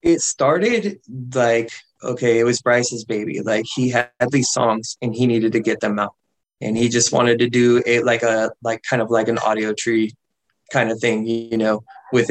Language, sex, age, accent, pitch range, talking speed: English, male, 20-39, American, 115-135 Hz, 205 wpm